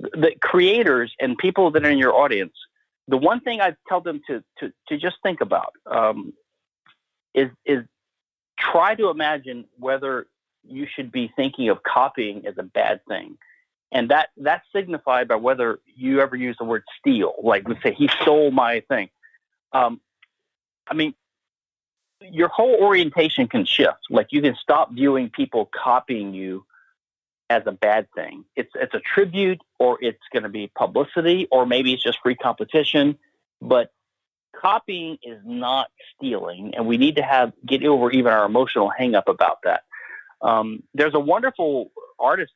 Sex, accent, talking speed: male, American, 165 wpm